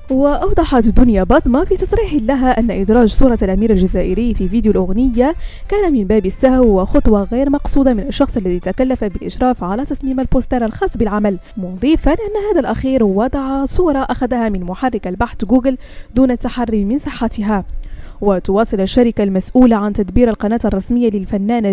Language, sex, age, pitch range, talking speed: French, female, 20-39, 210-275 Hz, 150 wpm